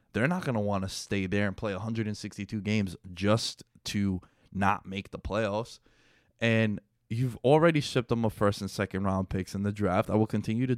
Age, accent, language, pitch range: 20-39, American, English, 100-125 Hz